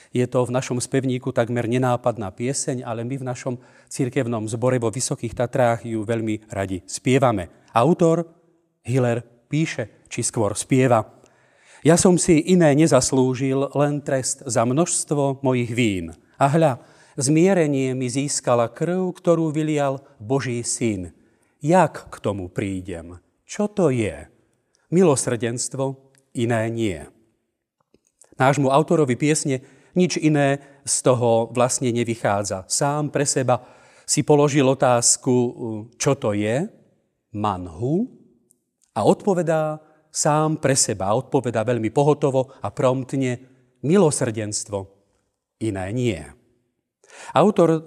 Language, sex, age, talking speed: Slovak, male, 40-59, 115 wpm